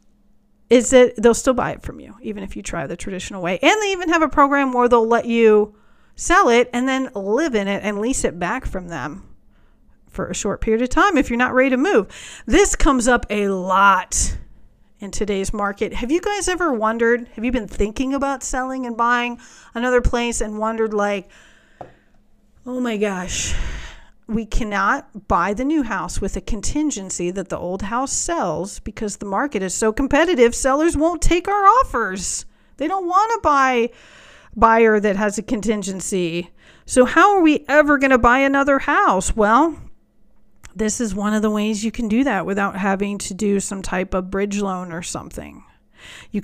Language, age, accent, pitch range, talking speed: English, 40-59, American, 200-265 Hz, 190 wpm